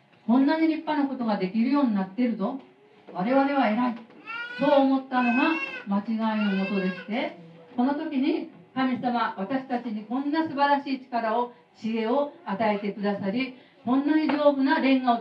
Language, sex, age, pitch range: Japanese, female, 50-69, 205-275 Hz